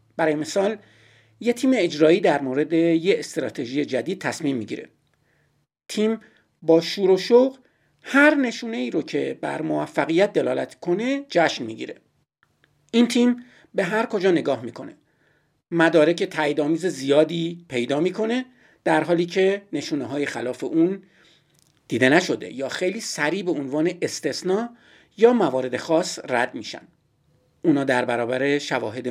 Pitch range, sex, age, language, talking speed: 150-195 Hz, male, 50-69, Persian, 130 wpm